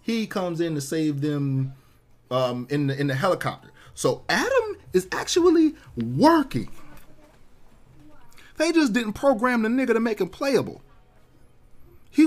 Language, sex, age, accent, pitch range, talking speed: English, male, 30-49, American, 110-150 Hz, 135 wpm